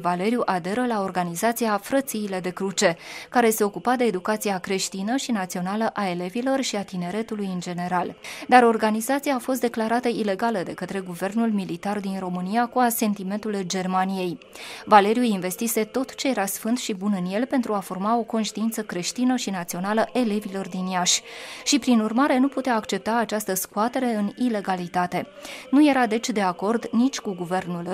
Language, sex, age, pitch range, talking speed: Romanian, female, 20-39, 190-245 Hz, 165 wpm